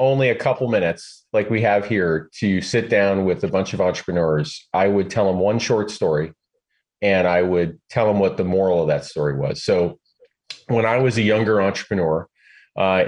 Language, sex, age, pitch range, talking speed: English, male, 30-49, 90-120 Hz, 195 wpm